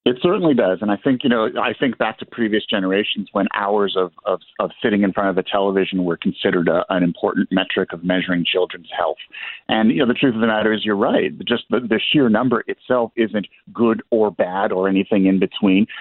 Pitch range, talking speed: 95-110 Hz, 225 wpm